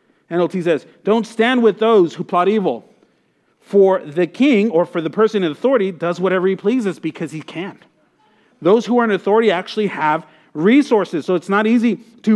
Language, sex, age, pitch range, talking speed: English, male, 40-59, 180-225 Hz, 185 wpm